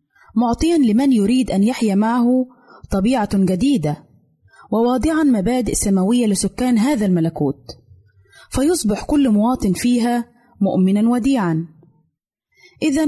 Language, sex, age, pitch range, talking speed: Arabic, female, 20-39, 185-255 Hz, 95 wpm